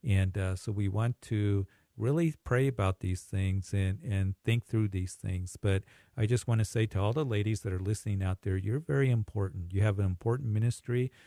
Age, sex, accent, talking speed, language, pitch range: 50-69, male, American, 215 wpm, English, 95-115 Hz